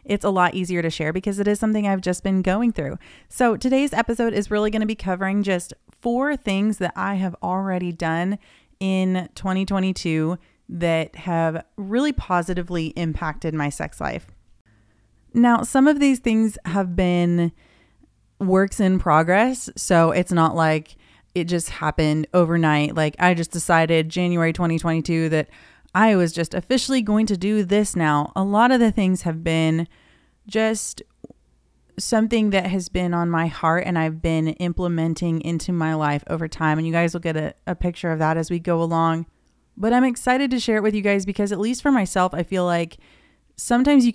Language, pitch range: English, 165-200 Hz